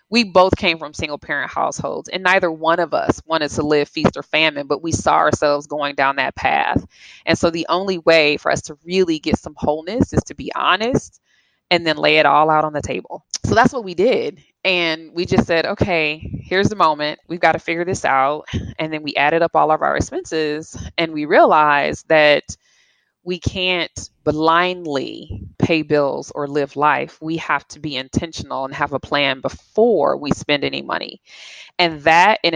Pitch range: 145-170 Hz